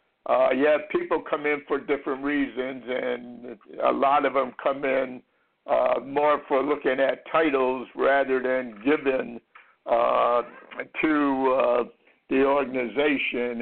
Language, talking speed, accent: English, 130 wpm, American